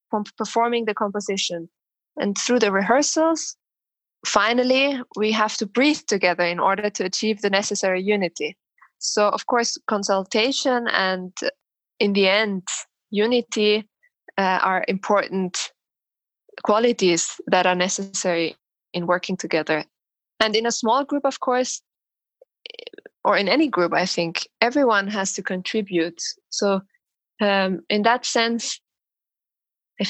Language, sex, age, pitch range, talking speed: English, female, 20-39, 185-225 Hz, 125 wpm